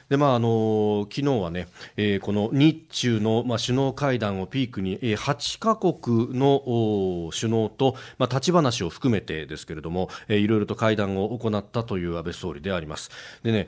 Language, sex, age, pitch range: Japanese, male, 40-59, 100-130 Hz